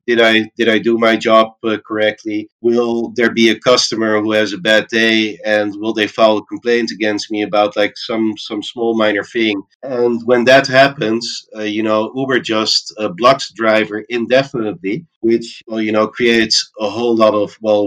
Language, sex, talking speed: English, male, 190 wpm